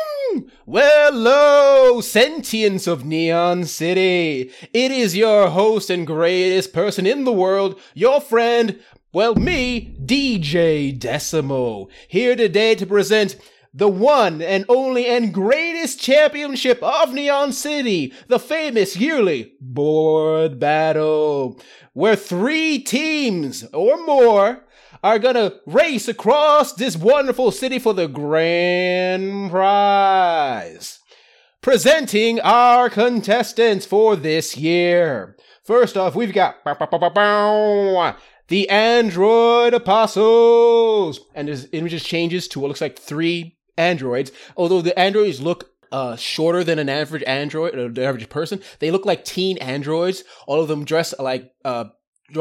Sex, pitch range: male, 160-240 Hz